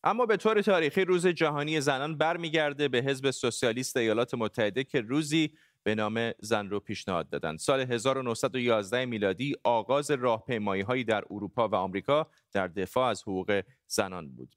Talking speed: 150 wpm